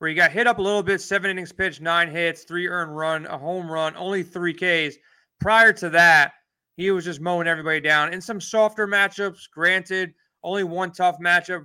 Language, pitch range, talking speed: English, 165-200 Hz, 205 wpm